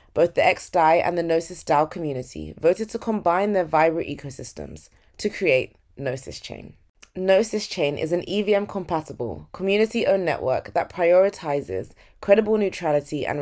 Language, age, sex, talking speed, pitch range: English, 20-39, female, 130 wpm, 145-185 Hz